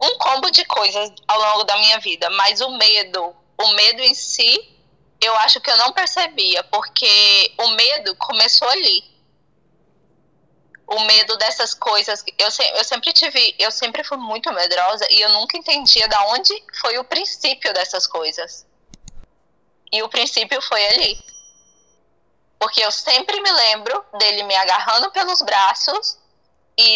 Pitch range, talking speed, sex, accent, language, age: 200-275 Hz, 150 wpm, female, Brazilian, Portuguese, 10-29